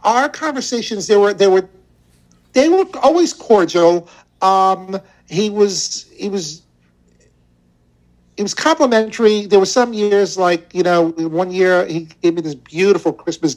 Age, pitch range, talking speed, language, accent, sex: 50-69, 155-205 Hz, 145 wpm, English, American, male